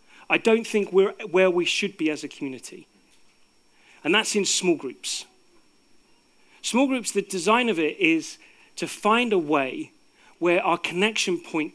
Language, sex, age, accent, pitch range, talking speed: English, male, 40-59, British, 155-230 Hz, 160 wpm